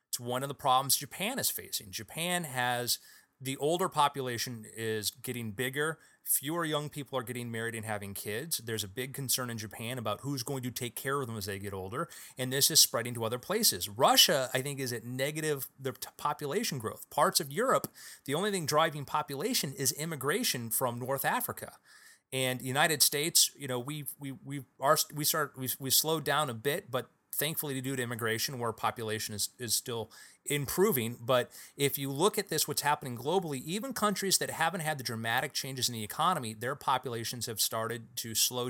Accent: American